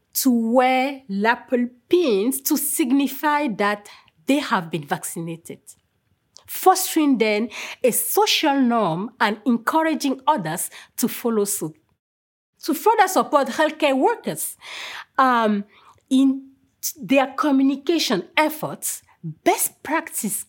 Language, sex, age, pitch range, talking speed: English, female, 40-59, 210-310 Hz, 105 wpm